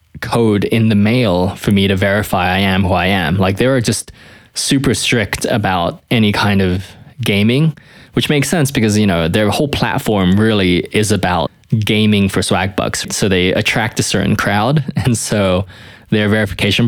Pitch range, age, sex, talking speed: 95-115 Hz, 20-39, male, 180 wpm